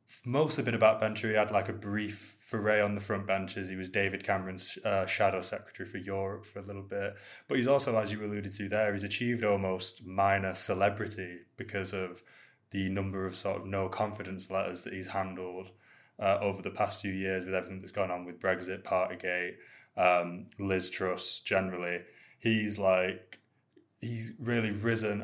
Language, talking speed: English, 180 wpm